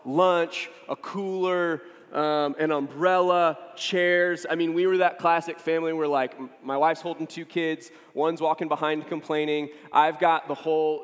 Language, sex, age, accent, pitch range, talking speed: English, male, 30-49, American, 150-180 Hz, 160 wpm